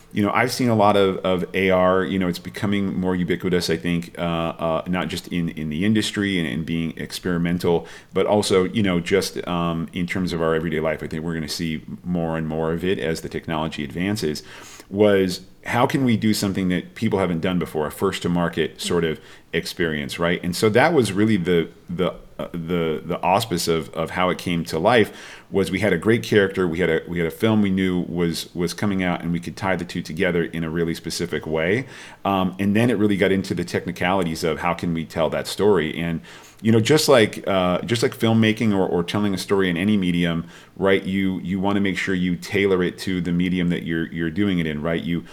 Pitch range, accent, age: 85-95 Hz, American, 40-59